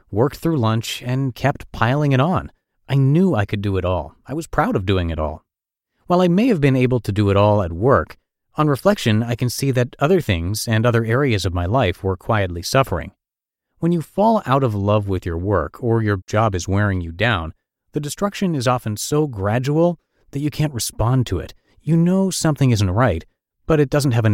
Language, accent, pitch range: English, American, 95-135 Hz